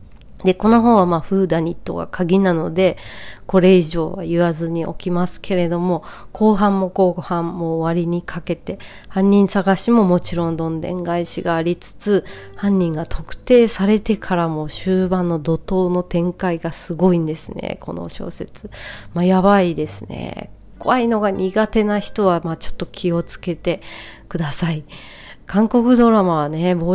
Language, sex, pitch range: Japanese, female, 160-190 Hz